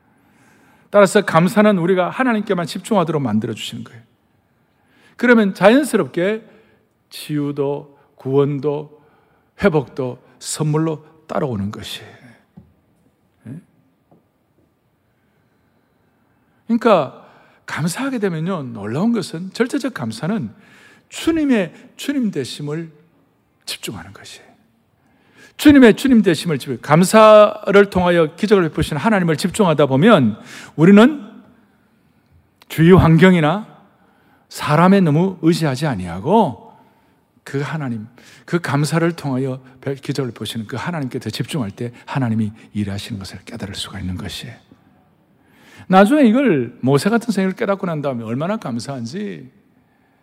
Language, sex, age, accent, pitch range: Korean, male, 60-79, native, 130-200 Hz